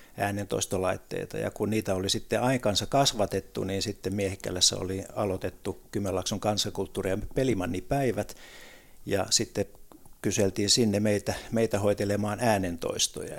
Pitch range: 95-115 Hz